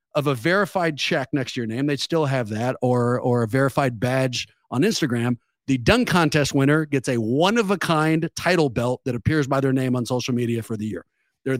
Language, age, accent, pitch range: English, 40-59, American, 135-200 Hz